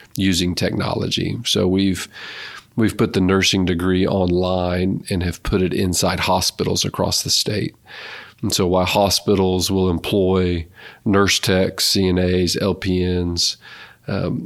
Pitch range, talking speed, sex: 90-100 Hz, 125 wpm, male